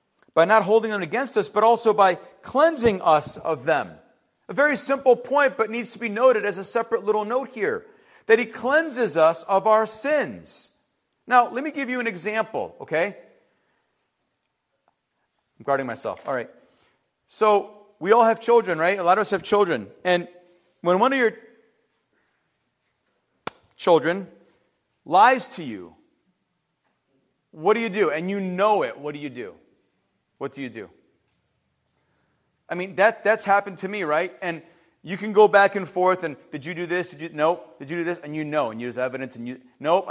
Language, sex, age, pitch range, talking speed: English, male, 40-59, 165-225 Hz, 180 wpm